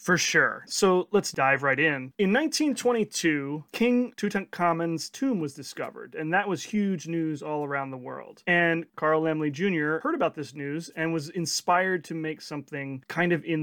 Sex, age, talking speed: male, 30-49, 175 wpm